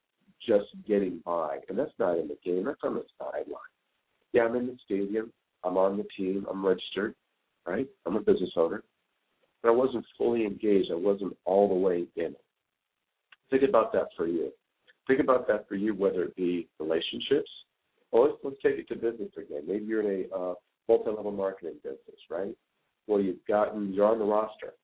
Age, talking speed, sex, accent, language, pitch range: 50-69, 190 wpm, male, American, English, 95-120 Hz